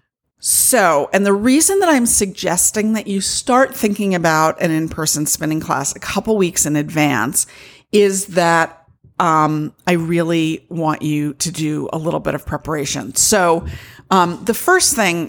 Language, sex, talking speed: English, female, 155 wpm